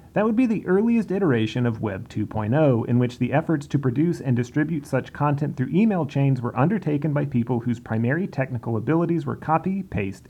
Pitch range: 120-155 Hz